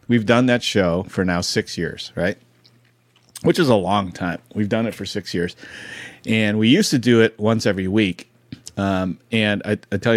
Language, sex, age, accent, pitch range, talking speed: English, male, 40-59, American, 95-115 Hz, 200 wpm